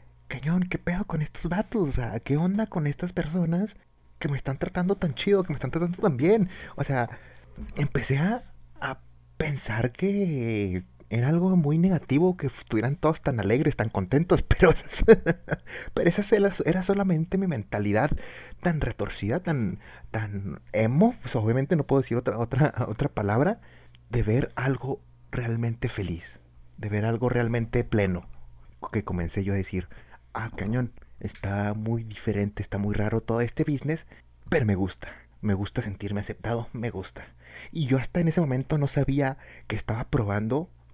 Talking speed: 165 wpm